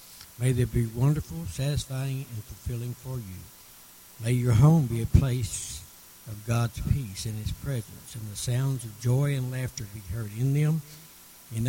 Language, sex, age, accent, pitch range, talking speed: English, male, 60-79, American, 110-135 Hz, 170 wpm